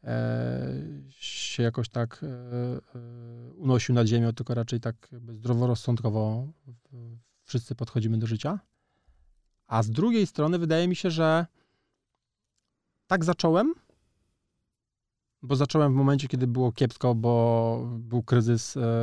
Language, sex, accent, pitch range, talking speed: Polish, male, native, 115-135 Hz, 105 wpm